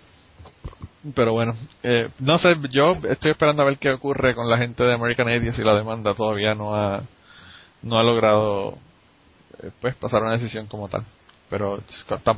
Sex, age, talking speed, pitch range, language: male, 20-39, 175 wpm, 105-125 Hz, Spanish